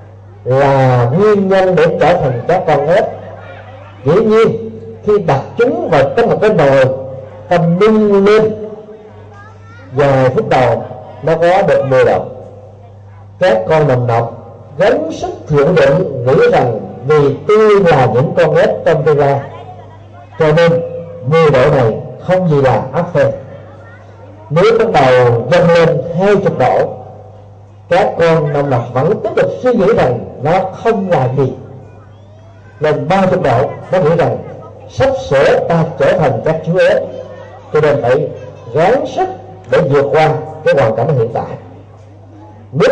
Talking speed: 150 wpm